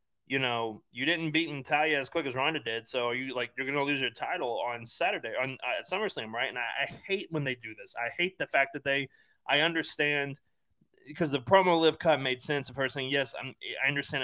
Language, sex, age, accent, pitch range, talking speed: English, male, 20-39, American, 125-155 Hz, 235 wpm